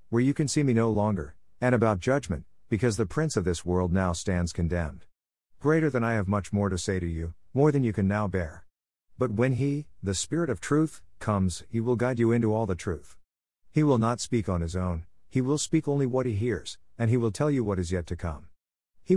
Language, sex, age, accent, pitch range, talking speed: English, male, 50-69, American, 90-120 Hz, 240 wpm